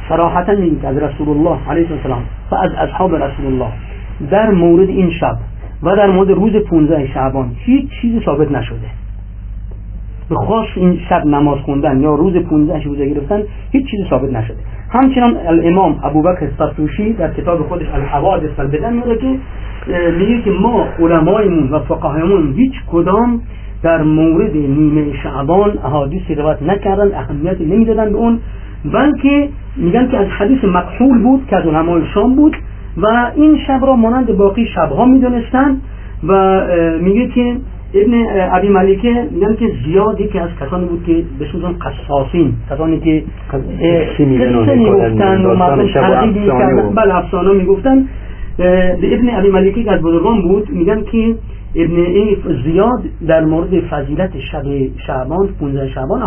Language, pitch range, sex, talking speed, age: Persian, 145-210 Hz, male, 145 wpm, 40-59